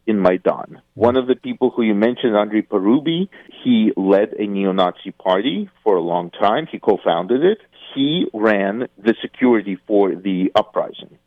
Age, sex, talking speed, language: 50-69, male, 160 wpm, English